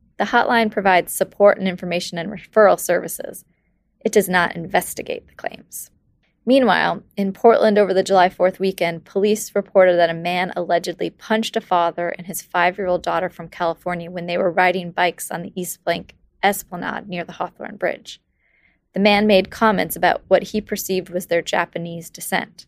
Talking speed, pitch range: 175 wpm, 175-210 Hz